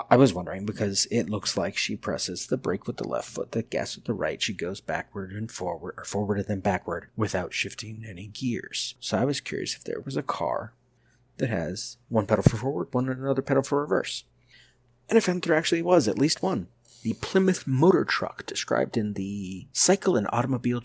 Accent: American